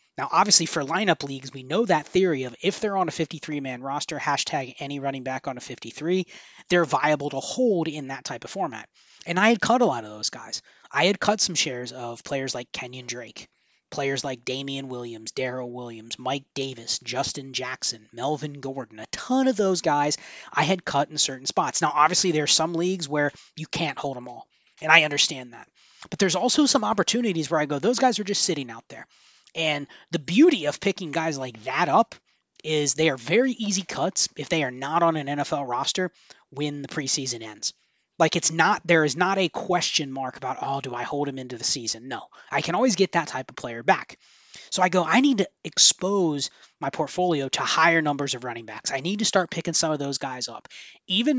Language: English